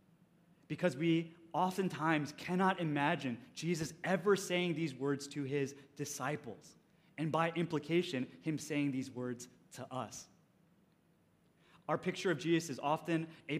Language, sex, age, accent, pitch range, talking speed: English, male, 20-39, American, 150-180 Hz, 130 wpm